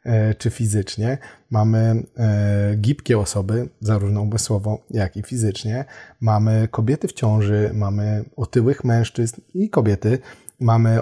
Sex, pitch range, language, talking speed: male, 105-125 Hz, Polish, 115 wpm